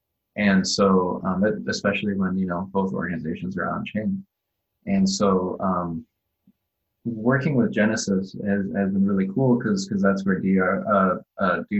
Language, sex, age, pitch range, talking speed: English, male, 20-39, 95-125 Hz, 155 wpm